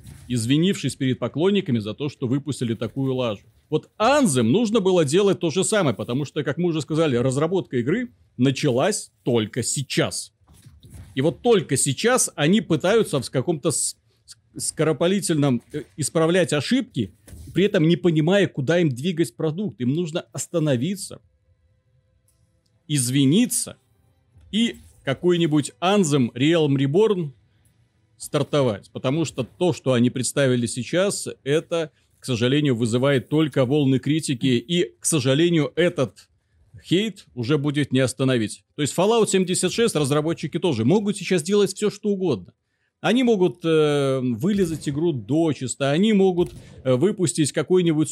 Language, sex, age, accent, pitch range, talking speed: Russian, male, 40-59, native, 125-175 Hz, 130 wpm